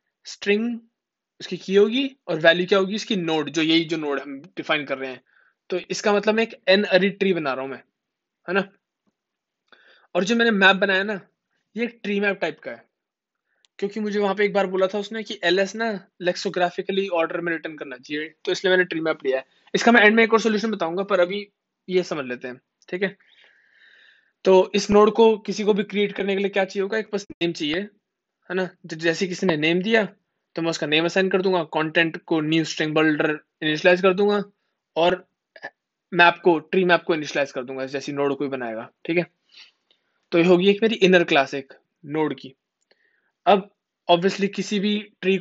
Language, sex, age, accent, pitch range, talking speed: Hindi, male, 20-39, native, 165-200 Hz, 165 wpm